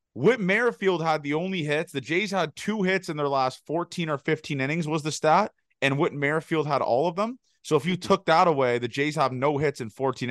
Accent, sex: American, male